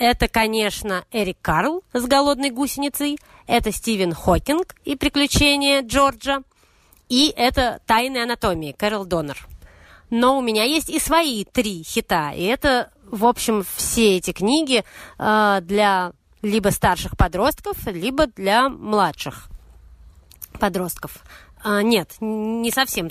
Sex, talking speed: female, 115 wpm